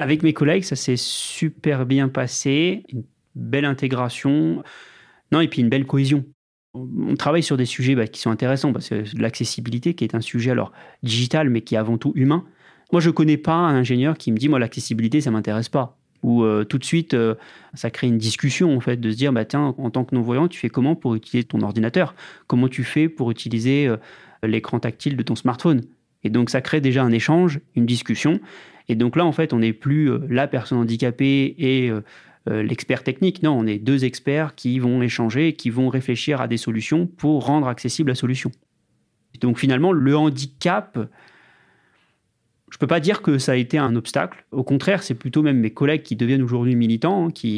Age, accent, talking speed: 30-49, French, 215 wpm